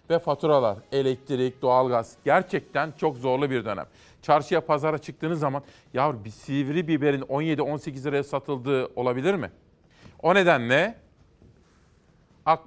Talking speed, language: 120 wpm, Turkish